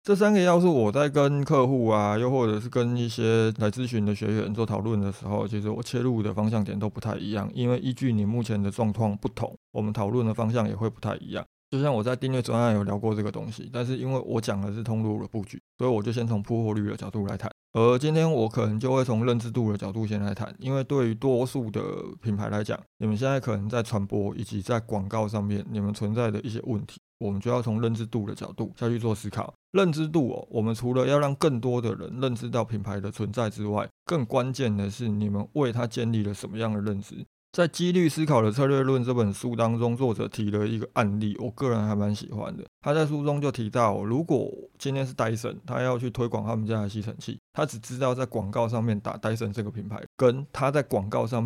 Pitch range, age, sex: 105-130 Hz, 20-39, male